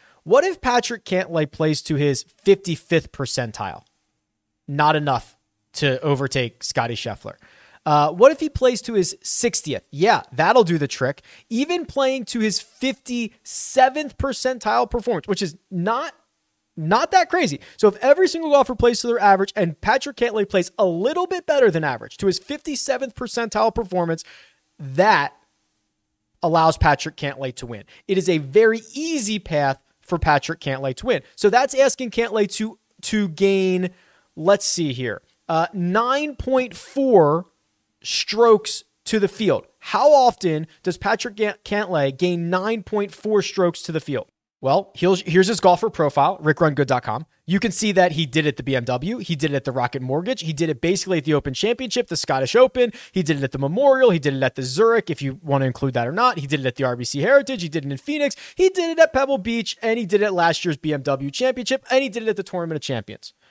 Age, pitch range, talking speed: 30-49, 150-240 Hz, 185 wpm